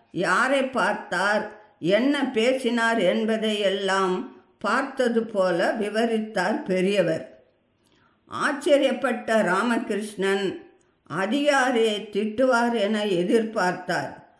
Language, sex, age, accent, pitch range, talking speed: English, female, 50-69, Indian, 200-265 Hz, 65 wpm